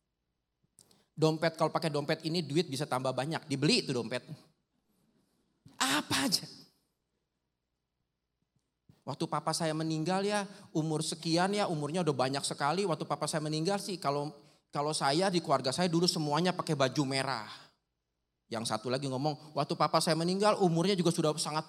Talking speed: 150 wpm